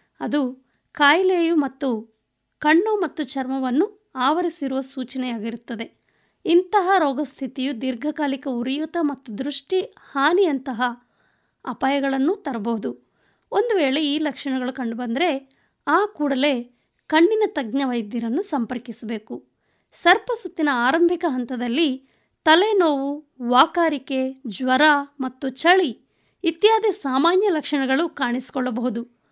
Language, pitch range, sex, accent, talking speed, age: Kannada, 255-335 Hz, female, native, 80 wpm, 20-39